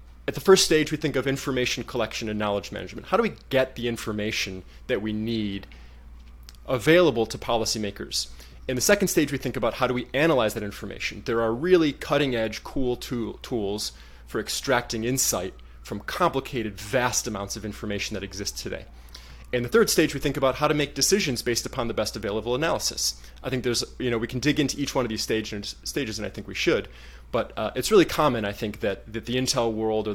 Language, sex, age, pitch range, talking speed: English, male, 20-39, 105-130 Hz, 215 wpm